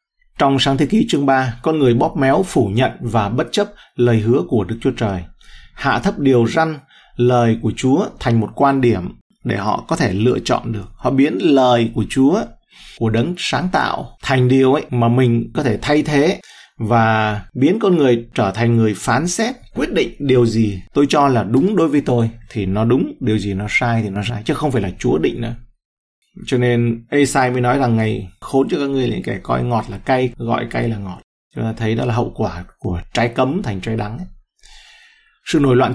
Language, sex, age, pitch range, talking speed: Vietnamese, male, 20-39, 115-140 Hz, 220 wpm